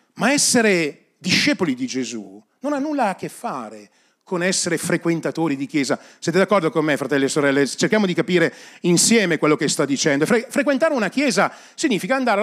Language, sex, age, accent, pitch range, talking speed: Italian, male, 40-59, native, 170-260 Hz, 175 wpm